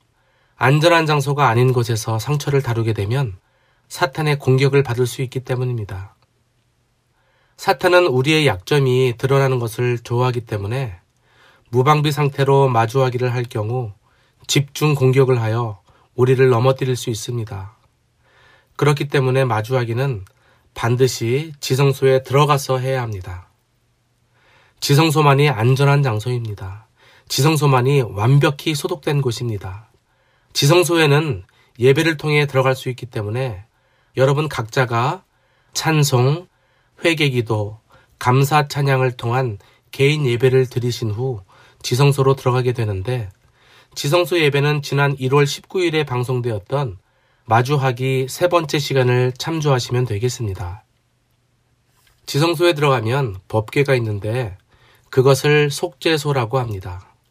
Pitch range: 120-140 Hz